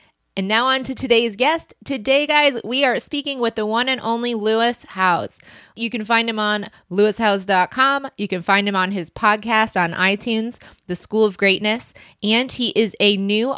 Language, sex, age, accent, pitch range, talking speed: English, female, 20-39, American, 185-230 Hz, 185 wpm